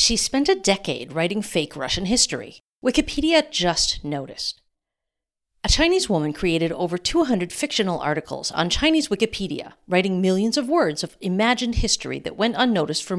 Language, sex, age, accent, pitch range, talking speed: English, female, 50-69, American, 165-255 Hz, 150 wpm